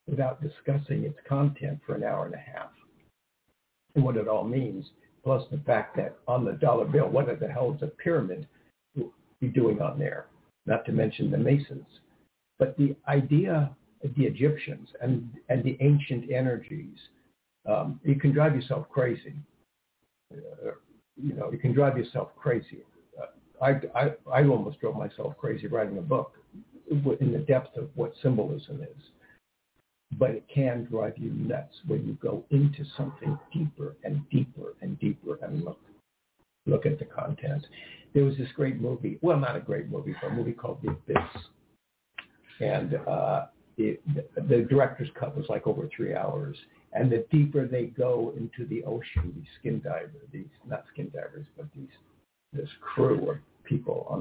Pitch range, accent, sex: 130-150 Hz, American, male